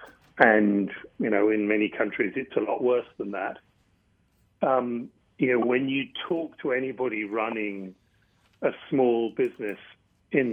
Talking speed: 140 wpm